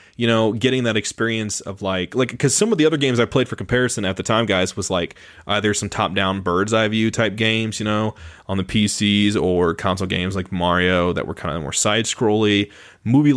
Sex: male